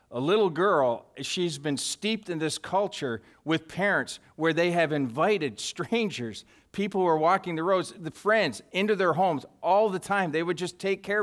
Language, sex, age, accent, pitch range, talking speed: English, male, 50-69, American, 165-215 Hz, 185 wpm